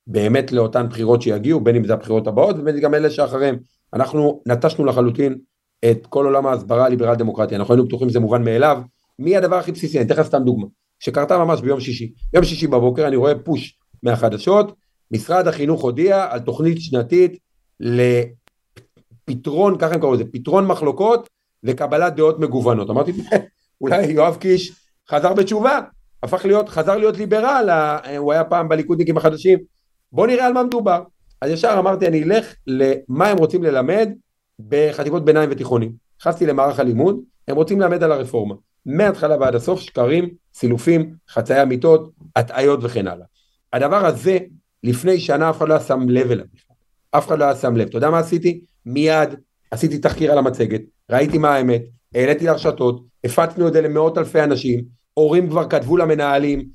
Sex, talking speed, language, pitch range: male, 145 wpm, Hebrew, 125-170 Hz